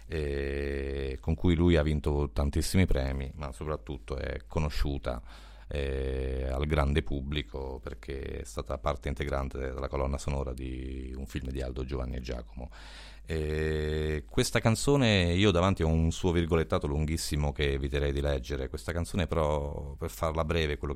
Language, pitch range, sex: Italian, 70-80 Hz, male